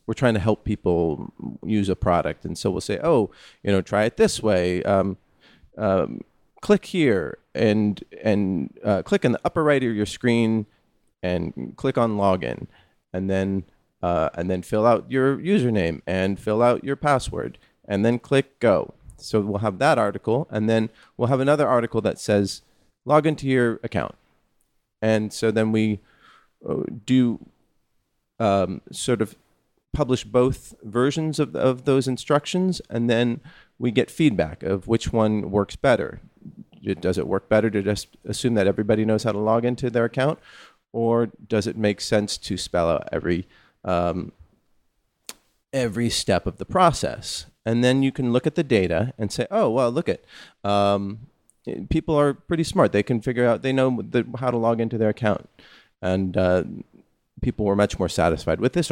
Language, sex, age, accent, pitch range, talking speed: English, male, 30-49, American, 100-125 Hz, 175 wpm